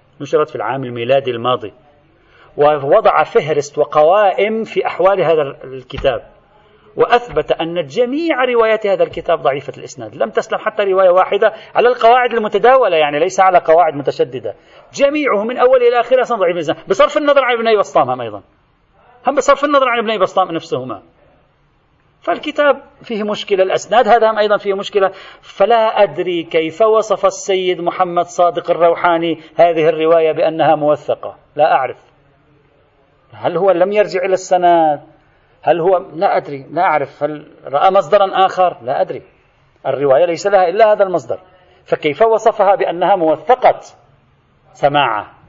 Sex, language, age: male, Arabic, 40-59